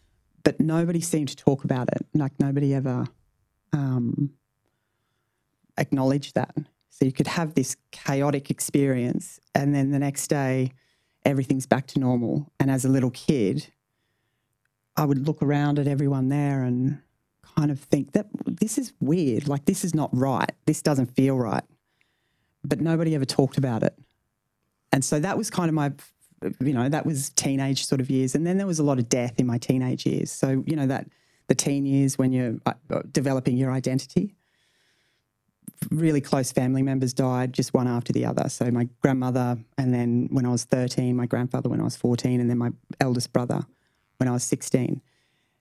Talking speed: 180 wpm